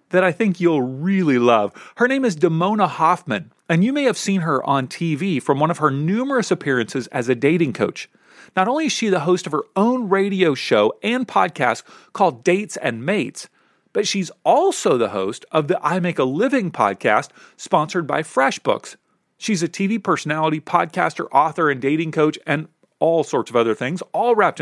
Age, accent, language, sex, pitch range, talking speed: 40-59, American, English, male, 155-215 Hz, 190 wpm